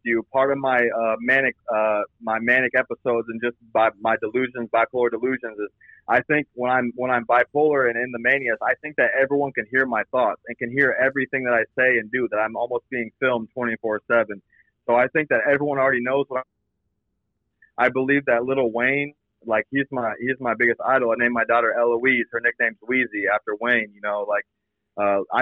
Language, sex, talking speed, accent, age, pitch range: English, male, 205 wpm, American, 30-49, 110-130 Hz